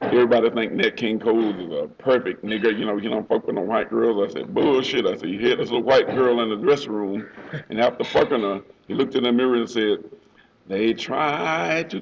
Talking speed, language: 235 wpm, English